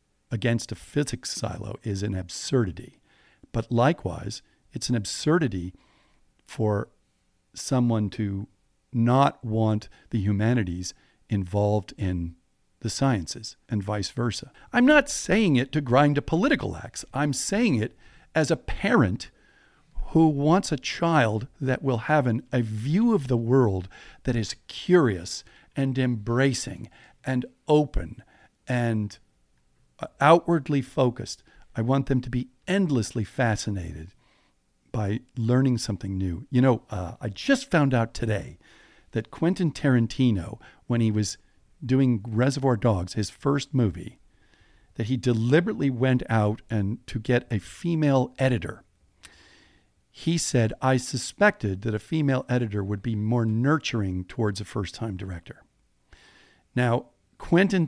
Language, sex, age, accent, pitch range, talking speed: English, male, 50-69, American, 105-135 Hz, 130 wpm